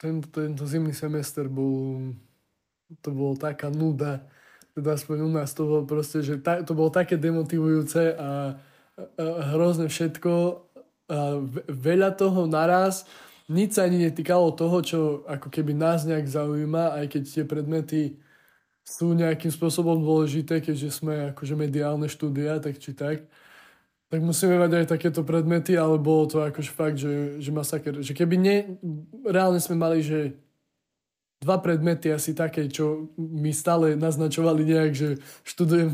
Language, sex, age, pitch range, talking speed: Slovak, male, 20-39, 150-170 Hz, 145 wpm